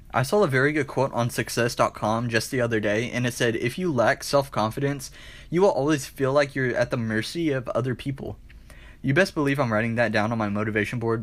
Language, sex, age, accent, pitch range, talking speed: English, male, 20-39, American, 120-160 Hz, 225 wpm